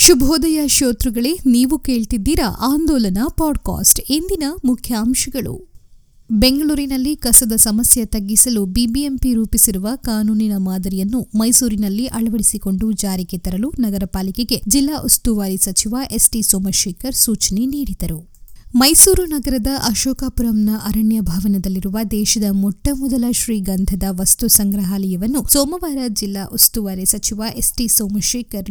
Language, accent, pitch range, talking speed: Kannada, native, 195-245 Hz, 90 wpm